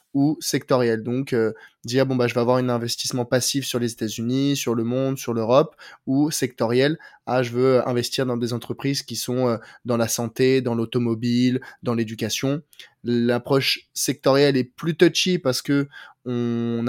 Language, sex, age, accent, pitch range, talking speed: French, male, 20-39, French, 120-140 Hz, 170 wpm